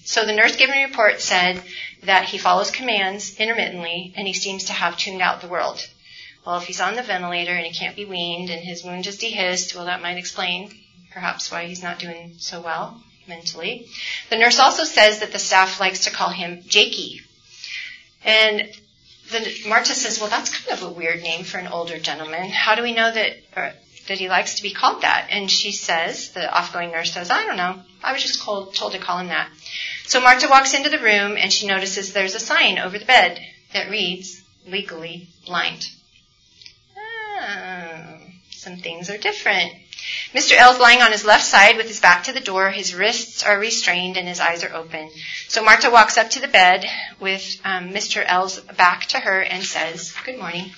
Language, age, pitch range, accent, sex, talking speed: English, 40-59, 180-220 Hz, American, female, 205 wpm